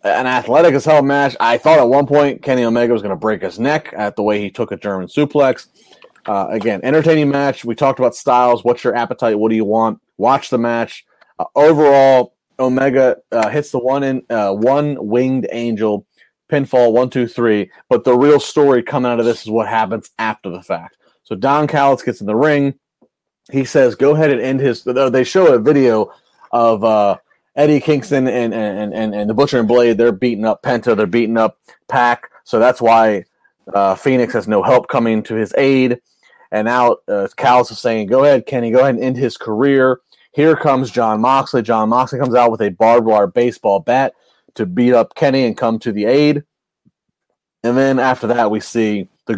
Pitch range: 115-140 Hz